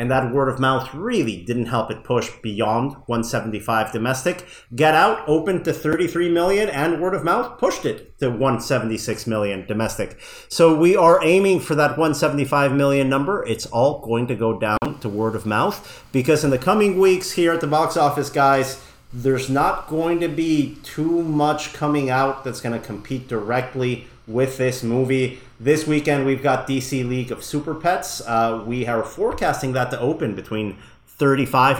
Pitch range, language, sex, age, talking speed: 115-150 Hz, English, male, 40-59, 175 wpm